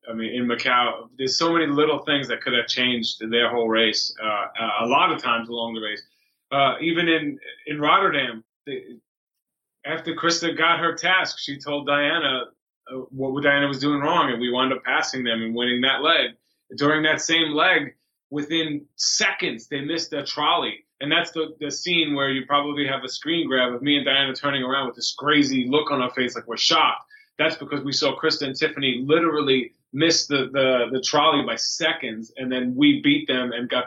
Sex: male